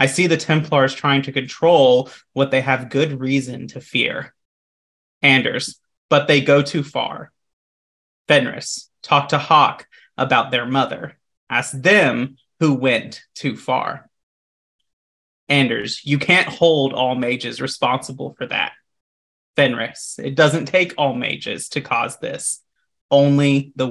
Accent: American